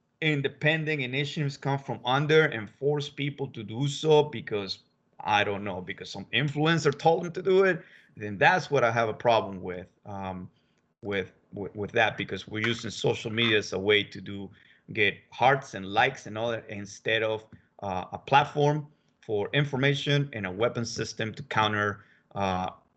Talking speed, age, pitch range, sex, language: 175 wpm, 30-49, 105-140 Hz, male, English